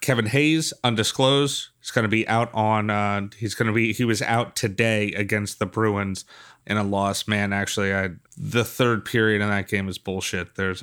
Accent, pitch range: American, 105-125 Hz